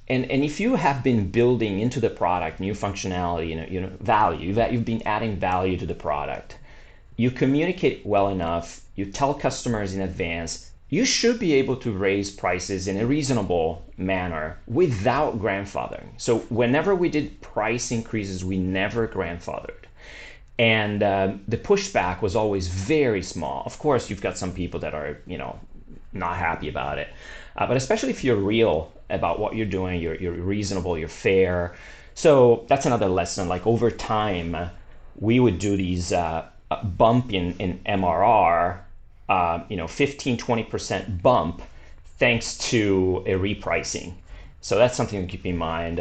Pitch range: 90-115 Hz